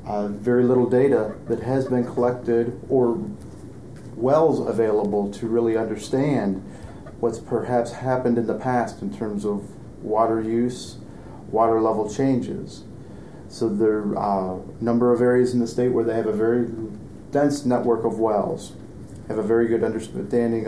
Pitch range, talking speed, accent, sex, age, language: 110-125 Hz, 150 wpm, American, male, 40-59, English